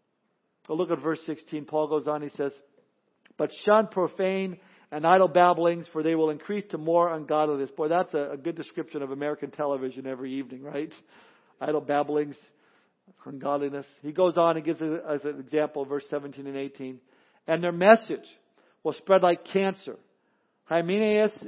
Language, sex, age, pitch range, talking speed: English, male, 50-69, 160-200 Hz, 160 wpm